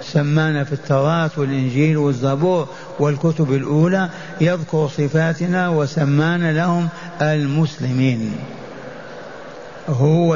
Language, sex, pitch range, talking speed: Arabic, male, 150-175 Hz, 75 wpm